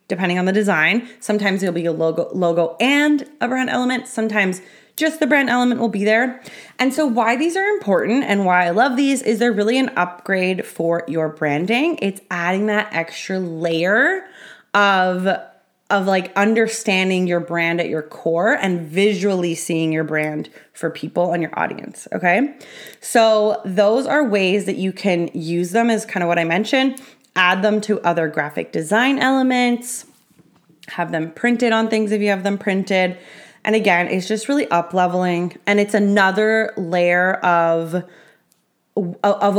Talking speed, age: 170 wpm, 20-39